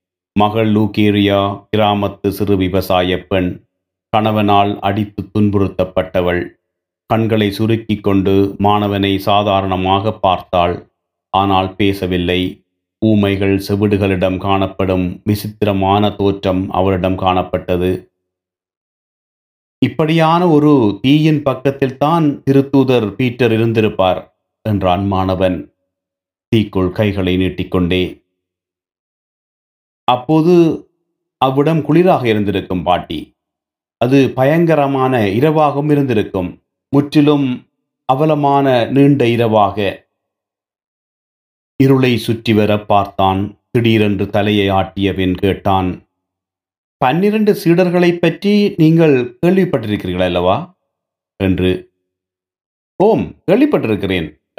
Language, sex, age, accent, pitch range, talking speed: Tamil, male, 30-49, native, 95-125 Hz, 75 wpm